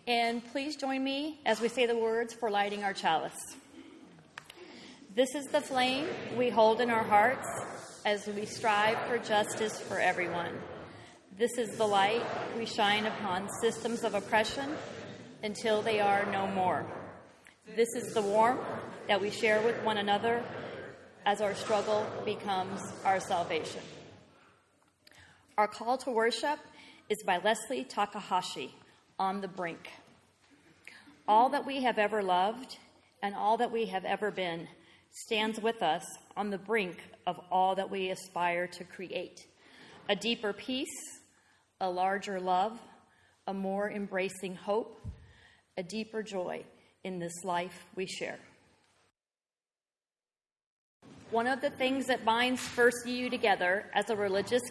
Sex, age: female, 40-59